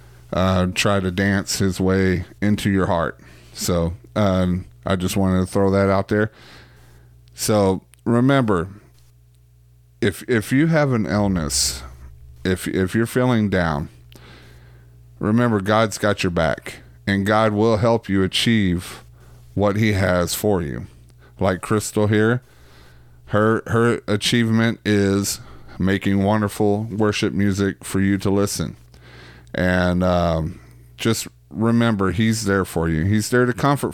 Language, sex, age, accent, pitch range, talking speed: English, male, 30-49, American, 80-110 Hz, 135 wpm